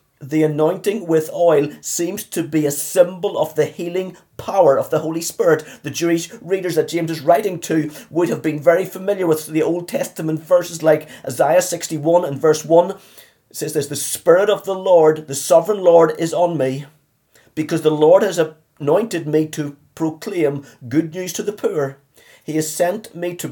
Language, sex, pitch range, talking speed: English, male, 140-175 Hz, 185 wpm